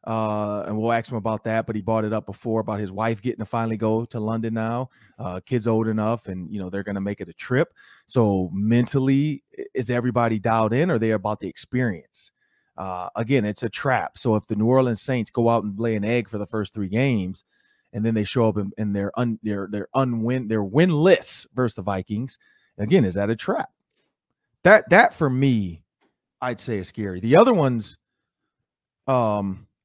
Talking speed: 210 wpm